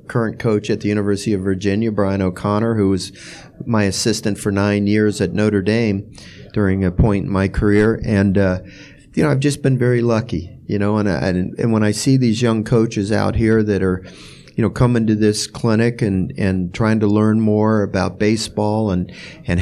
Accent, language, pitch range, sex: American, English, 100-115 Hz, male